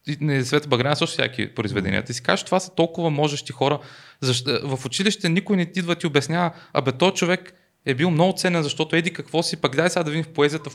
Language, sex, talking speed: Bulgarian, male, 230 wpm